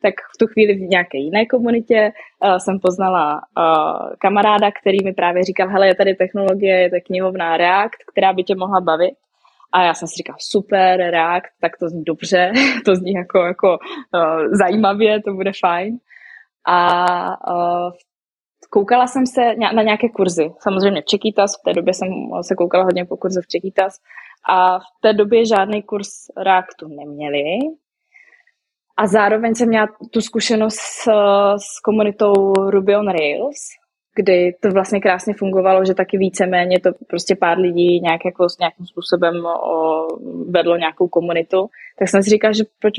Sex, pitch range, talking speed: female, 180-215 Hz, 170 wpm